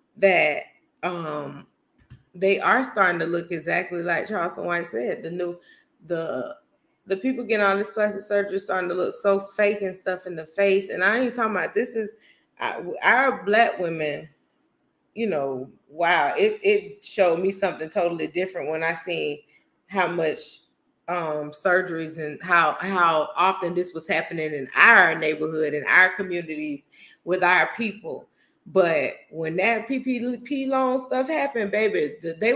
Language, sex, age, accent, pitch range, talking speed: English, female, 20-39, American, 170-210 Hz, 160 wpm